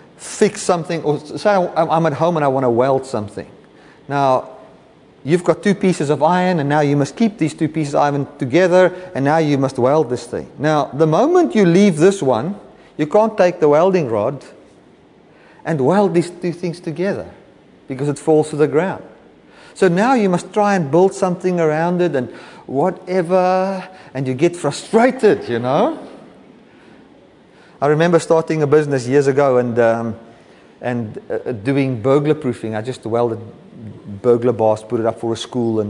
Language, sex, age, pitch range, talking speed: English, male, 30-49, 130-175 Hz, 180 wpm